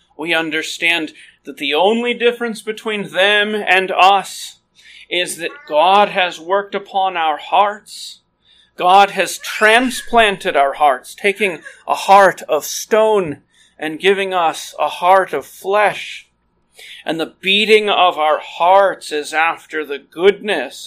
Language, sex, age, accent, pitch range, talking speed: English, male, 40-59, American, 160-225 Hz, 130 wpm